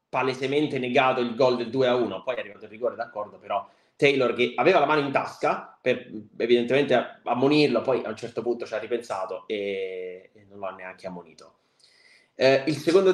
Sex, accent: male, native